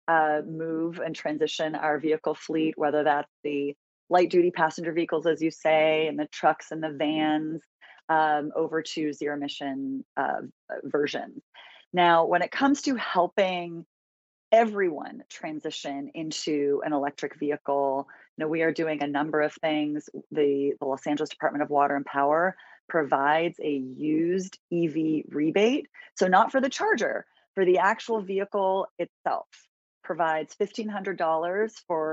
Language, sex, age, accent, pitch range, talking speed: English, female, 30-49, American, 155-180 Hz, 150 wpm